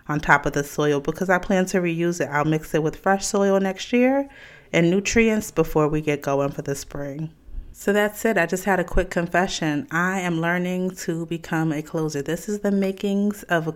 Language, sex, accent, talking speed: English, female, American, 220 wpm